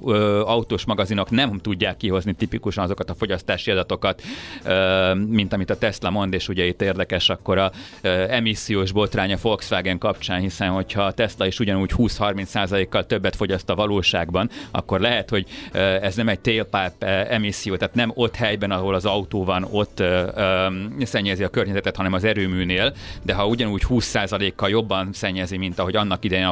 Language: Hungarian